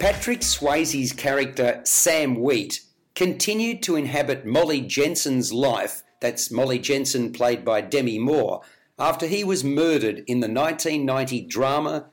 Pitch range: 130-170 Hz